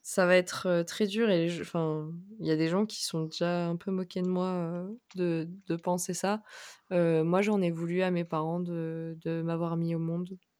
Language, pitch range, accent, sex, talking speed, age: French, 165-190 Hz, French, female, 220 wpm, 20-39